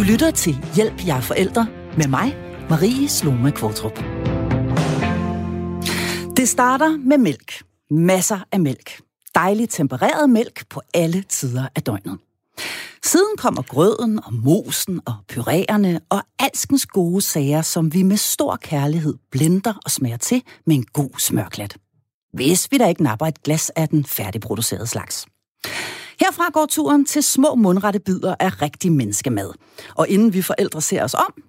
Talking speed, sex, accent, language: 150 wpm, female, native, Danish